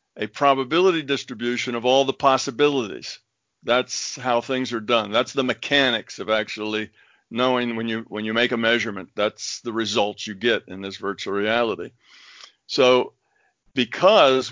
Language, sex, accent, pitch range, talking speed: English, male, American, 115-135 Hz, 150 wpm